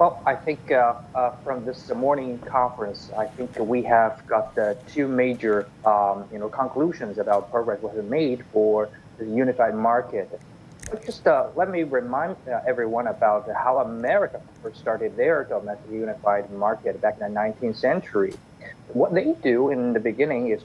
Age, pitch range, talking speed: 30-49, 110-150 Hz, 170 wpm